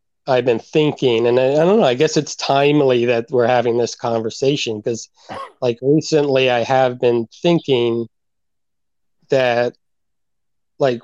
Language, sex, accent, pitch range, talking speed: English, male, American, 115-135 Hz, 140 wpm